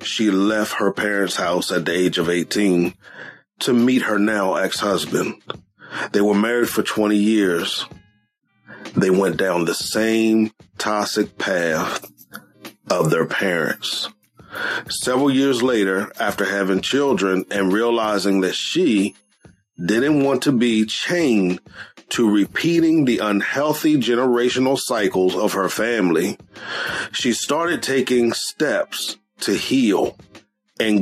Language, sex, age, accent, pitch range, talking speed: English, male, 30-49, American, 100-130 Hz, 120 wpm